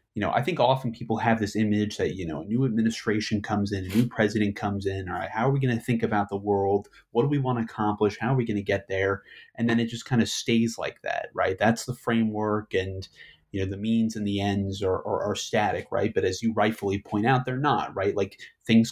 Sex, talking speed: male, 265 wpm